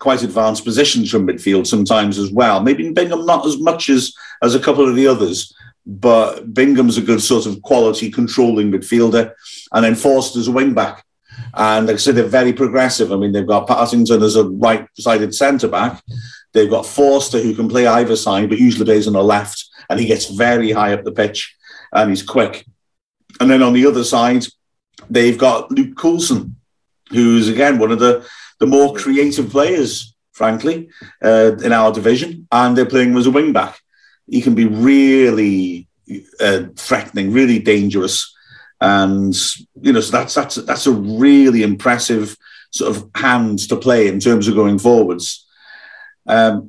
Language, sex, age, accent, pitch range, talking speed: English, male, 50-69, British, 110-135 Hz, 175 wpm